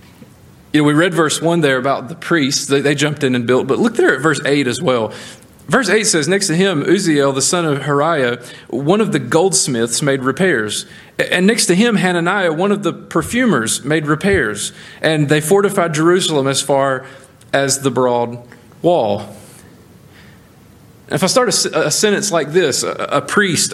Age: 40-59